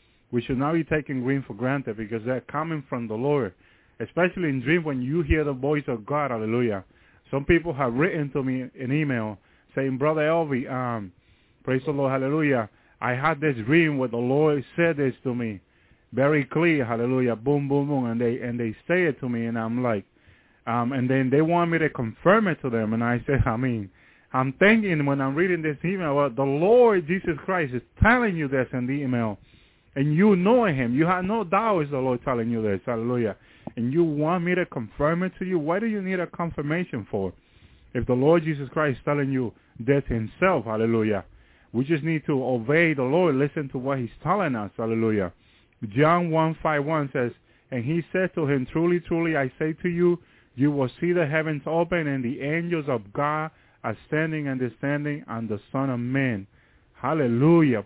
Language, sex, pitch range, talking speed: English, male, 120-160 Hz, 200 wpm